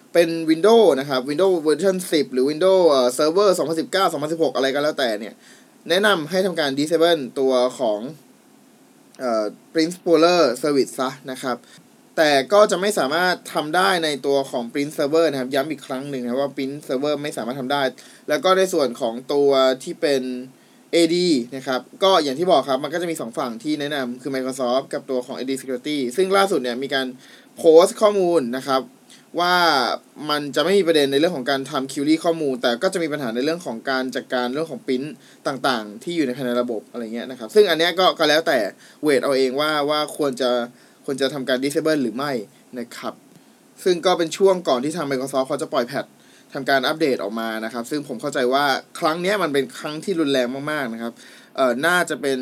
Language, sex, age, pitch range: Thai, male, 20-39, 130-170 Hz